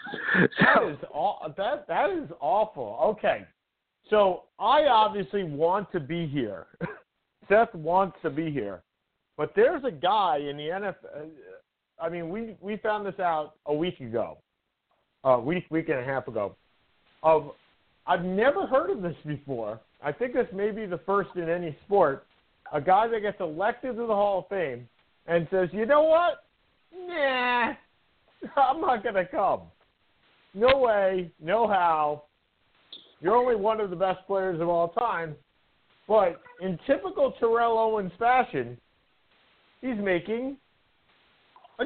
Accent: American